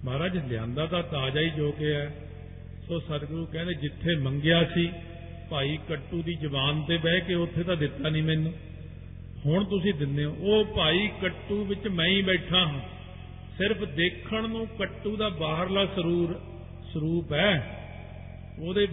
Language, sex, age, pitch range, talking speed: Punjabi, male, 50-69, 140-185 Hz, 150 wpm